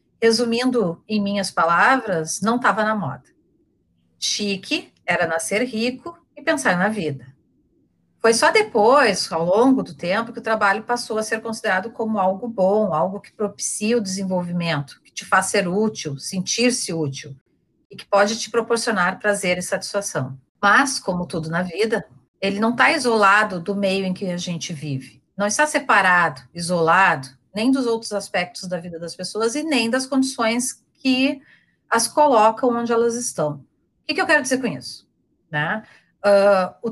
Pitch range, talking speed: 180-235 Hz, 165 wpm